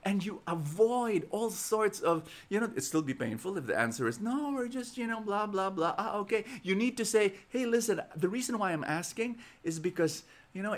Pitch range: 145-205 Hz